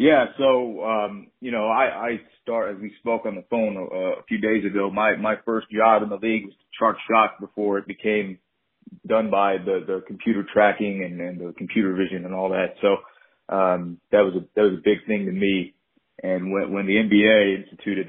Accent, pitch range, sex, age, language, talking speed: American, 95-110 Hz, male, 30-49, English, 215 wpm